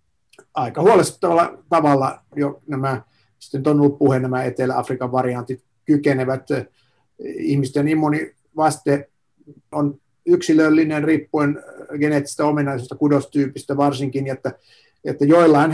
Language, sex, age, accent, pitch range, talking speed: Finnish, male, 50-69, native, 135-150 Hz, 90 wpm